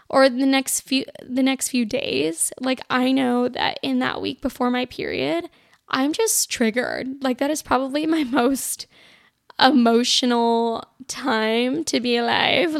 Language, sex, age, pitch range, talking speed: English, female, 10-29, 240-295 Hz, 150 wpm